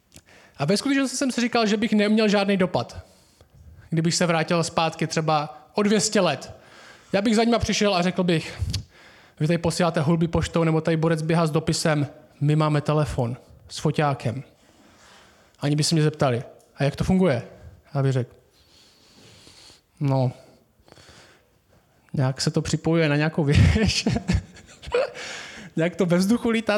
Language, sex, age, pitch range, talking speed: Czech, male, 20-39, 145-200 Hz, 150 wpm